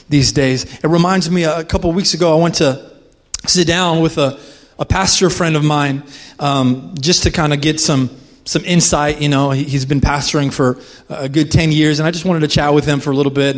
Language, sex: English, male